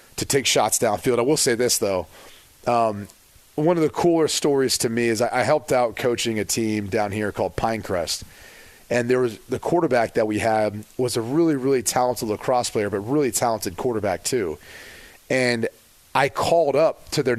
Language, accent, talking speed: English, American, 190 wpm